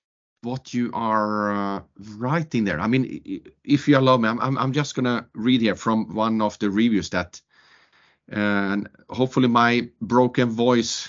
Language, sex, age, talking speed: English, male, 40-59, 160 wpm